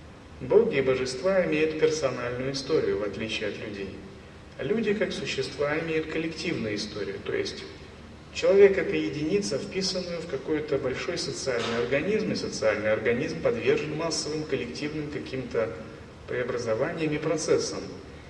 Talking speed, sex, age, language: 120 wpm, male, 30-49, Russian